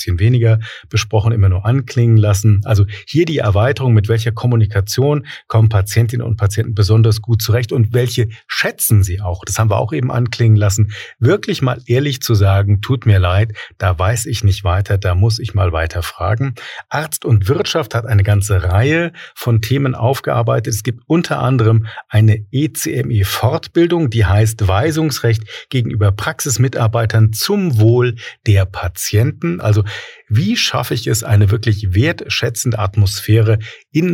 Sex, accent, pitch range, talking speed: male, German, 100-120 Hz, 150 wpm